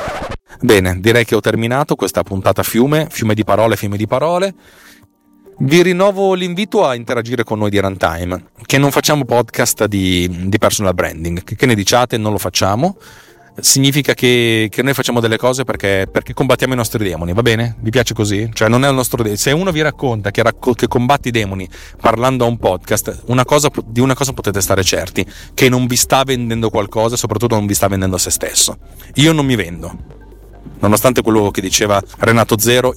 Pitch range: 100-130 Hz